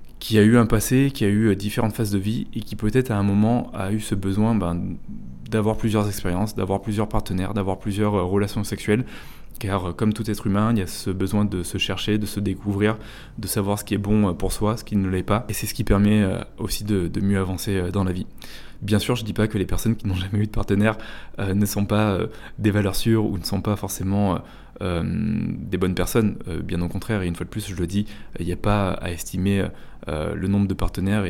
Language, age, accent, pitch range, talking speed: French, 20-39, French, 95-110 Hz, 255 wpm